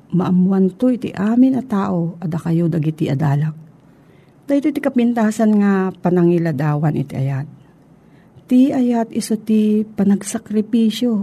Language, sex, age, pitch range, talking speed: Filipino, female, 40-59, 165-215 Hz, 100 wpm